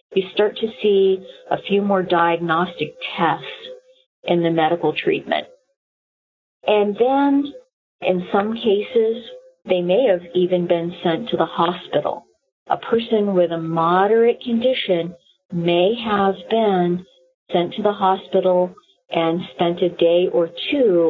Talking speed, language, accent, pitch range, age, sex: 130 wpm, English, American, 170-215 Hz, 50-69, female